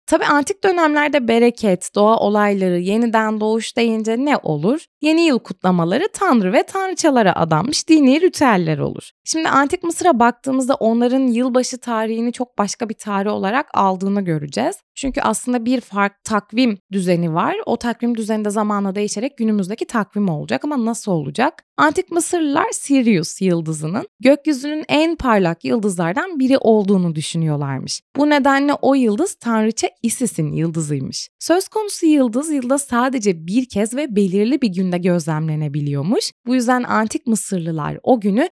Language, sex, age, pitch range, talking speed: Turkish, female, 20-39, 195-270 Hz, 140 wpm